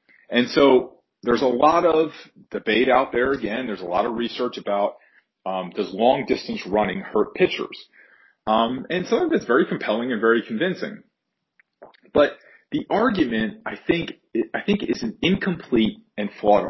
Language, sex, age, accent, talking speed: English, male, 40-59, American, 155 wpm